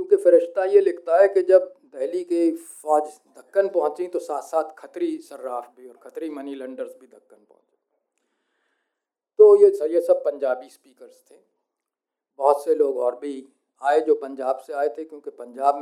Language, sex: Hindi, male